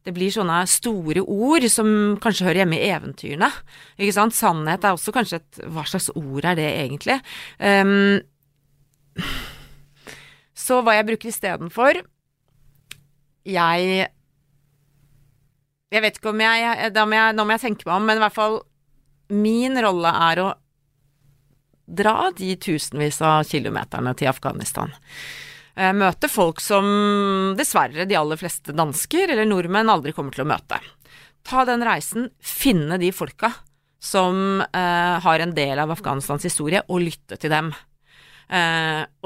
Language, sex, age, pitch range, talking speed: Danish, female, 30-49, 145-205 Hz, 140 wpm